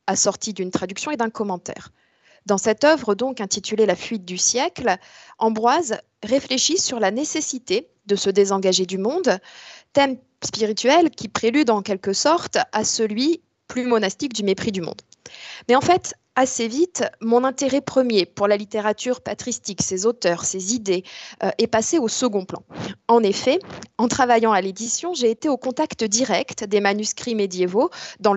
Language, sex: French, female